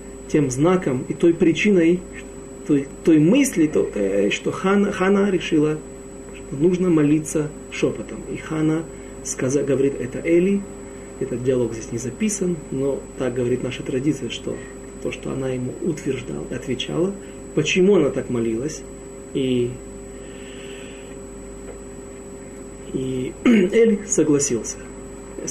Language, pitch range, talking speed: Russian, 130-165 Hz, 110 wpm